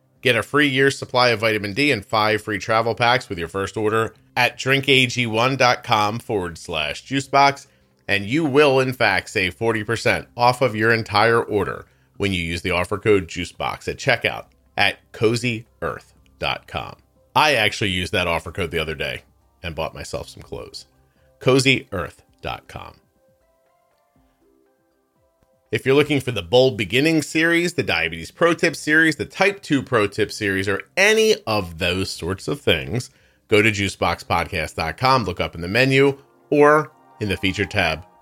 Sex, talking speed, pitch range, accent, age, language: male, 155 wpm, 90-135 Hz, American, 40-59, English